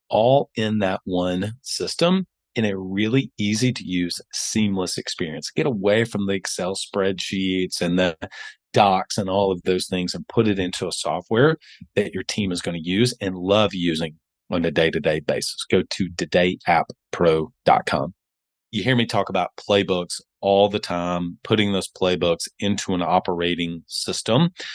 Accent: American